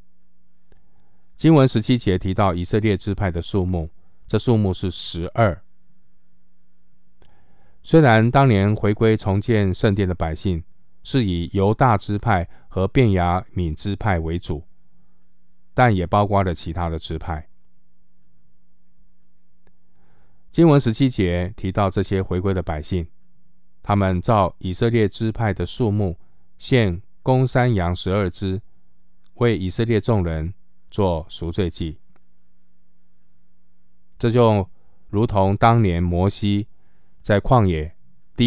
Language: Chinese